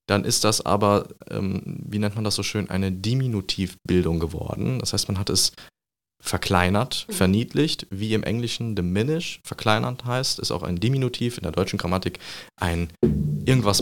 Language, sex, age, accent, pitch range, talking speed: German, male, 30-49, German, 90-110 Hz, 160 wpm